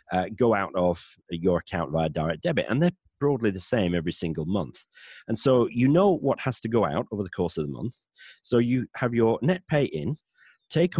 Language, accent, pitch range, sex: English, British, 95-145 Hz, male